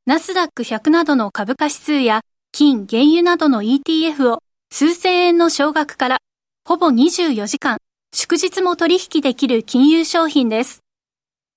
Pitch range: 250-330 Hz